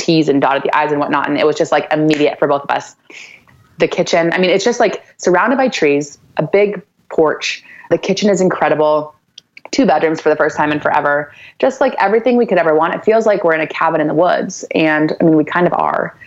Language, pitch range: English, 145-180 Hz